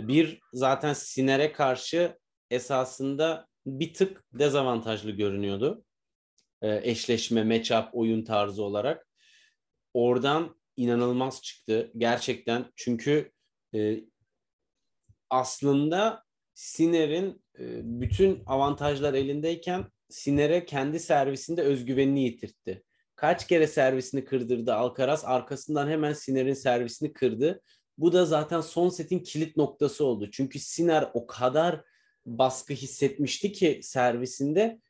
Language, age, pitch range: Turkish, 30-49, 130-180 Hz